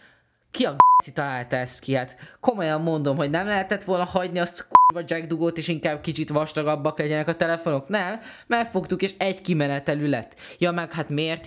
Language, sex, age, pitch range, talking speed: Hungarian, male, 20-39, 120-160 Hz, 175 wpm